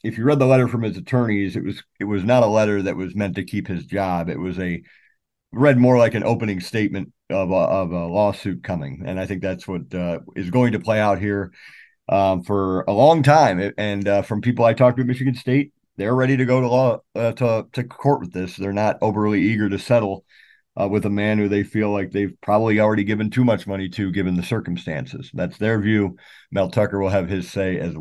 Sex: male